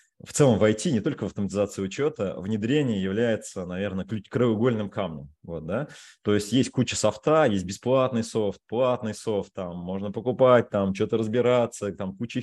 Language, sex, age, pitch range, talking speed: Russian, male, 20-39, 95-120 Hz, 165 wpm